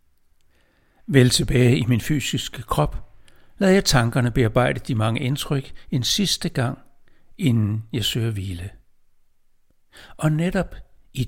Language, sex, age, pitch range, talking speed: Danish, male, 60-79, 110-140 Hz, 120 wpm